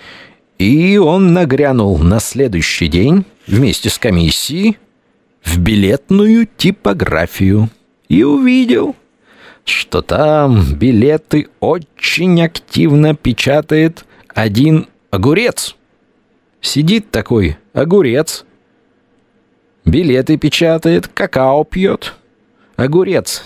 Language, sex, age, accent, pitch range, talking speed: Russian, male, 40-59, native, 105-170 Hz, 75 wpm